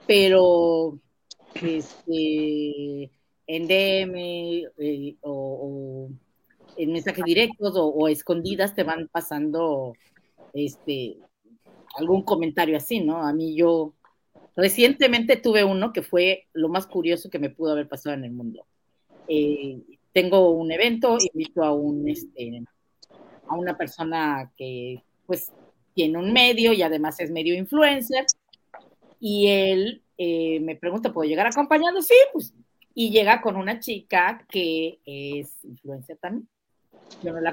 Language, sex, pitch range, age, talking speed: Spanish, female, 155-225 Hz, 40-59, 135 wpm